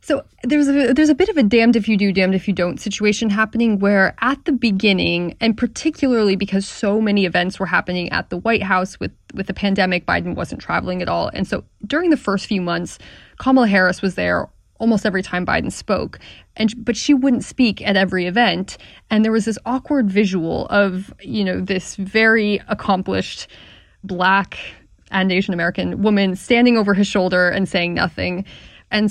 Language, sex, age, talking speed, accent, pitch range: English, female, 20-39, 190 wpm, American, 180-215 Hz